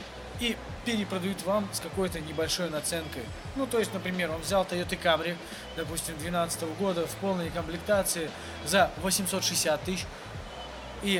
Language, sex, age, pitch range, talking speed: Russian, male, 20-39, 160-200 Hz, 135 wpm